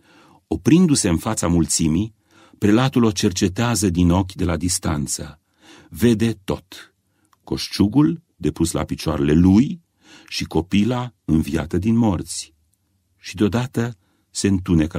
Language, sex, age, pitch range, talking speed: Romanian, male, 40-59, 85-105 Hz, 110 wpm